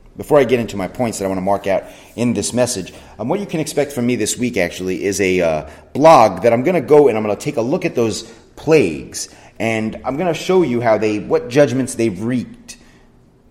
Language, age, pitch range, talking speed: English, 30-49, 90-125 Hz, 250 wpm